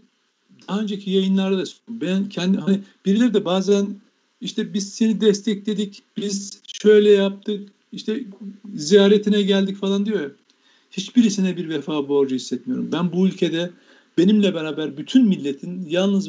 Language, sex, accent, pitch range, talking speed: Turkish, male, native, 160-215 Hz, 135 wpm